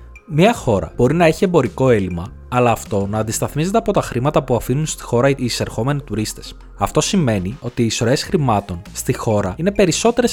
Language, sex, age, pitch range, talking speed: Greek, male, 20-39, 100-155 Hz, 180 wpm